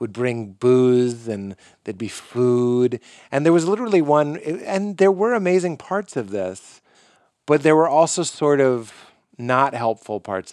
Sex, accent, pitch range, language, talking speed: male, American, 120-160 Hz, English, 160 wpm